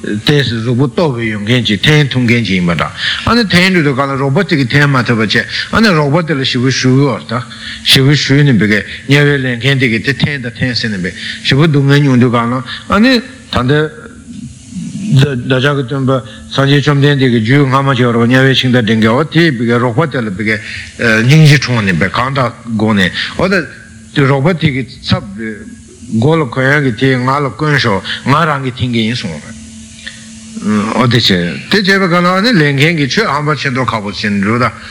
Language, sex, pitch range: Italian, male, 110-150 Hz